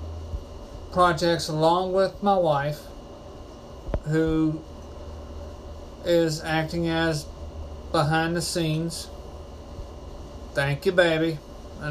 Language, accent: English, American